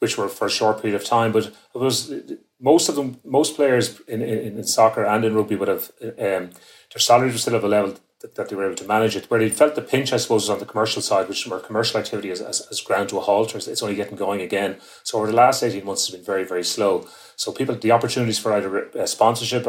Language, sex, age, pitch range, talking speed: English, male, 30-49, 100-115 Hz, 270 wpm